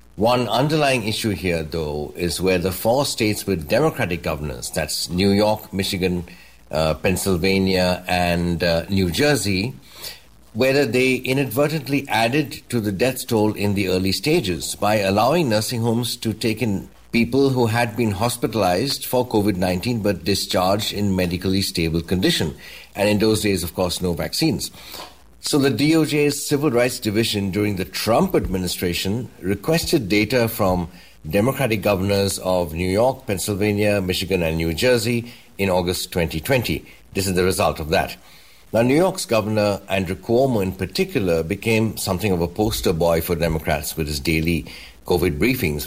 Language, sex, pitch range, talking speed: English, male, 90-115 Hz, 150 wpm